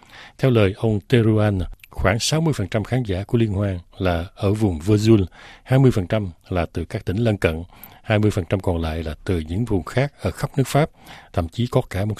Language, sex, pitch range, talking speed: Vietnamese, male, 95-120 Hz, 190 wpm